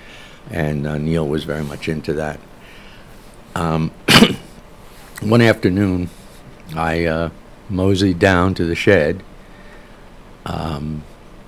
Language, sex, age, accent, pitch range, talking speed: English, male, 60-79, American, 75-85 Hz, 100 wpm